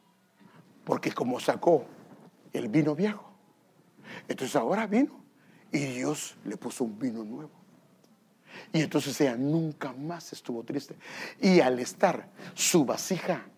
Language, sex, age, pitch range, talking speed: English, male, 60-79, 165-220 Hz, 125 wpm